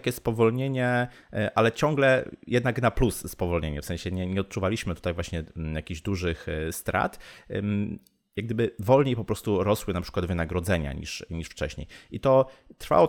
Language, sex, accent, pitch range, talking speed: Polish, male, native, 85-115 Hz, 150 wpm